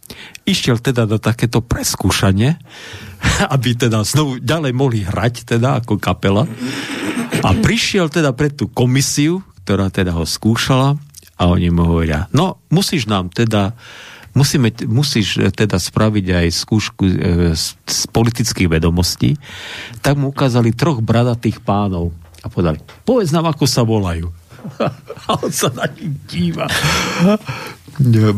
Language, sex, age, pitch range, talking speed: Slovak, male, 50-69, 105-145 Hz, 130 wpm